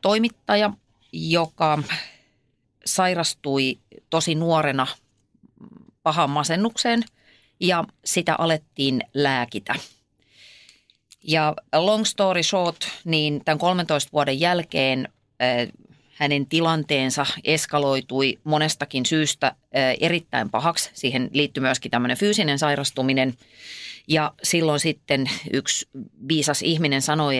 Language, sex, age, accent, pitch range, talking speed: Finnish, female, 30-49, native, 135-165 Hz, 90 wpm